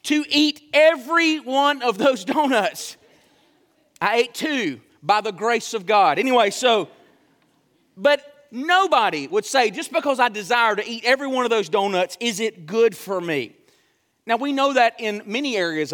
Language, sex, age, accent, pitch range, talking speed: English, male, 40-59, American, 210-270 Hz, 165 wpm